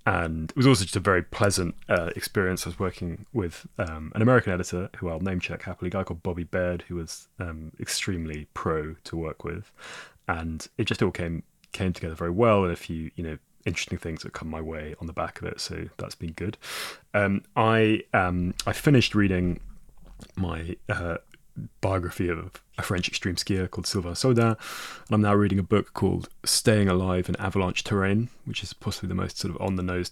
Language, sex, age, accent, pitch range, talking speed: English, male, 20-39, British, 85-100 Hz, 205 wpm